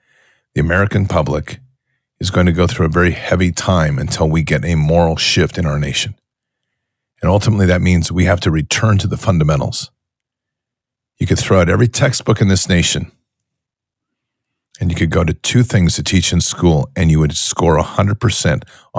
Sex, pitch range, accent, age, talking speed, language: male, 80-105 Hz, American, 50-69, 180 wpm, English